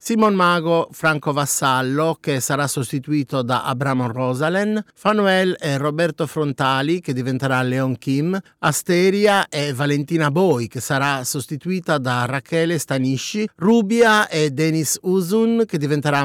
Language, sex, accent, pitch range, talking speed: Italian, male, native, 140-175 Hz, 125 wpm